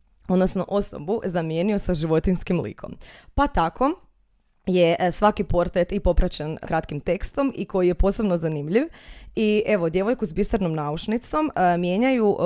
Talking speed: 130 wpm